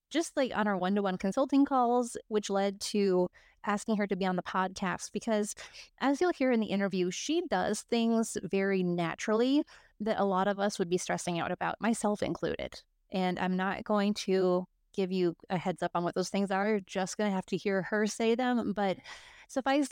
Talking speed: 205 wpm